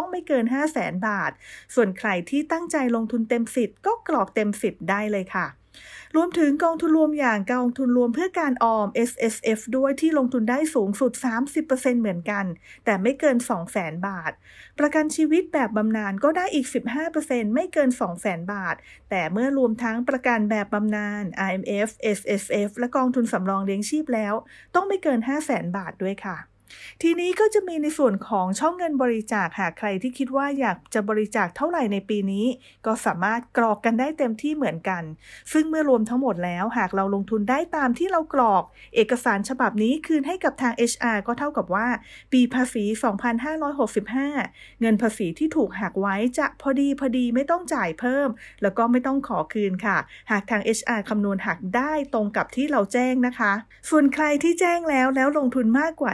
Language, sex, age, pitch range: English, female, 30-49, 210-280 Hz